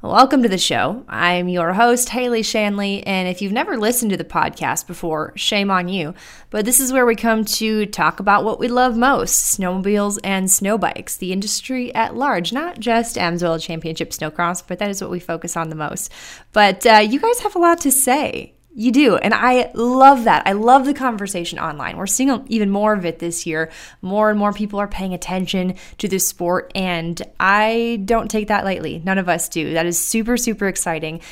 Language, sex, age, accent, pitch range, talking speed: English, female, 20-39, American, 180-235 Hz, 210 wpm